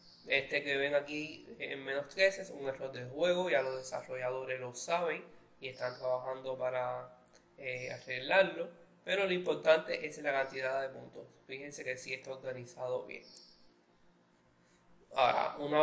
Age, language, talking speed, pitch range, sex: 20-39, English, 150 wpm, 130-165 Hz, male